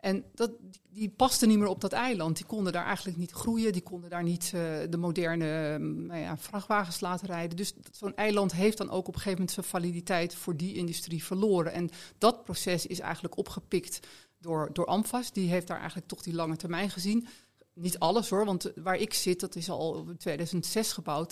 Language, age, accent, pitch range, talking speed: Dutch, 40-59, Dutch, 170-200 Hz, 205 wpm